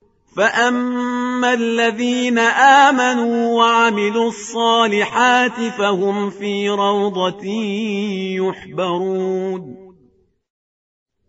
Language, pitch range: Persian, 200-230 Hz